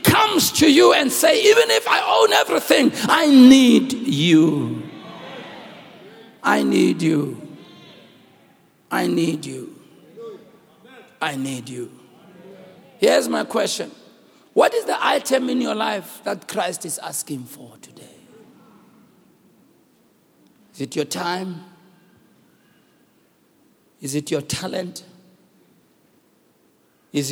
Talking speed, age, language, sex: 105 wpm, 60-79, English, male